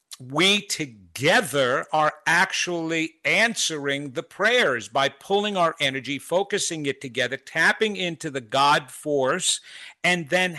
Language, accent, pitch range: English, American, 145-185 Hz